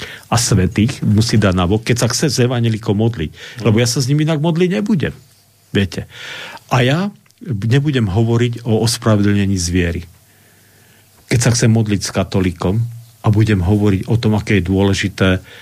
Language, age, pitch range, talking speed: Slovak, 50-69, 100-140 Hz, 160 wpm